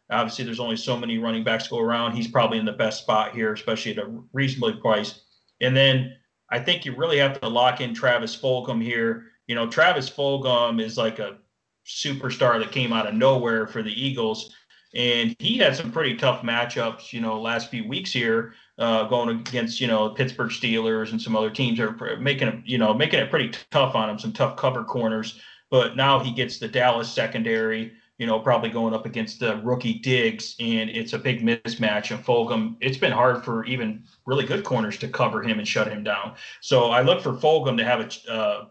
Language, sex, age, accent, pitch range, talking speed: English, male, 30-49, American, 110-125 Hz, 215 wpm